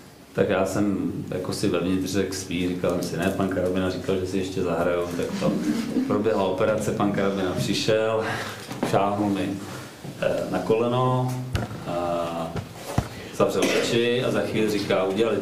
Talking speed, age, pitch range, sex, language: 140 wpm, 40-59, 90-105 Hz, male, Czech